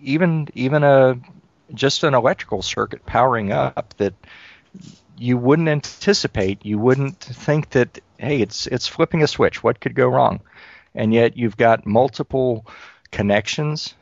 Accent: American